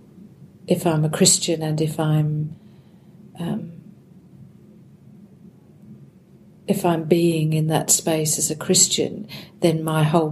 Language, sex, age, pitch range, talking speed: English, female, 50-69, 155-180 Hz, 115 wpm